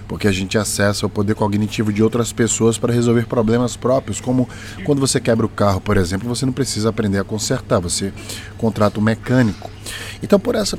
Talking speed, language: 195 wpm, Portuguese